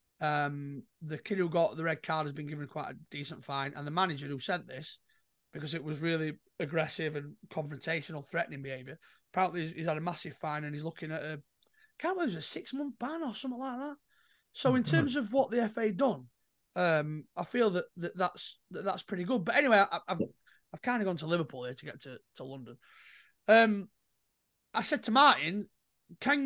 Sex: male